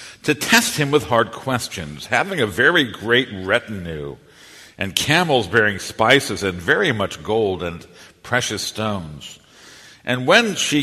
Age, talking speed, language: 60-79, 140 wpm, English